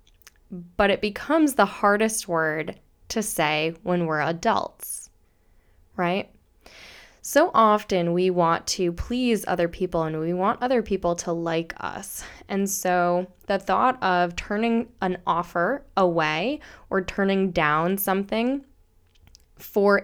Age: 10-29